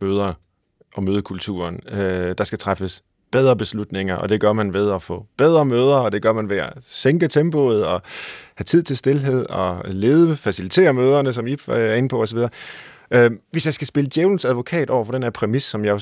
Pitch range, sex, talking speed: 105-145 Hz, male, 200 wpm